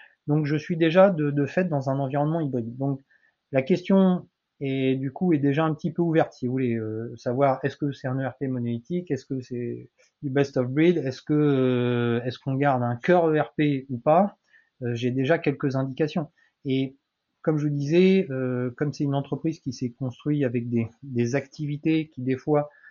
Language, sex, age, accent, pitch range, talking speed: French, male, 30-49, French, 125-150 Hz, 200 wpm